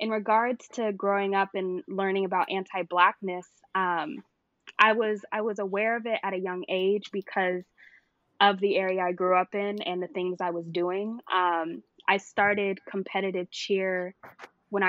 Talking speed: 170 wpm